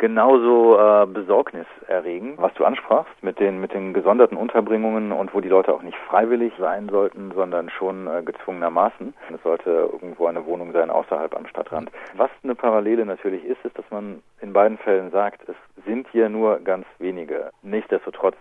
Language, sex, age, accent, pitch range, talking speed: German, male, 40-59, German, 95-115 Hz, 175 wpm